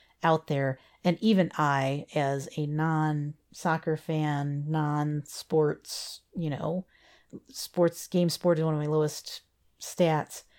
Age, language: 40-59, English